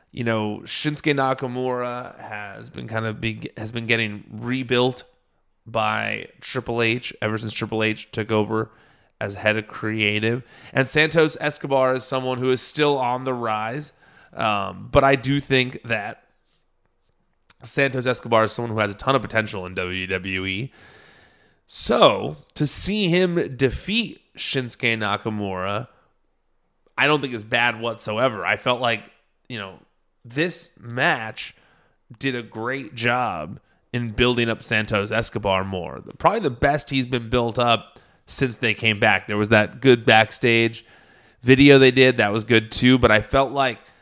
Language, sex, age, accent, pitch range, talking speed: English, male, 30-49, American, 110-130 Hz, 155 wpm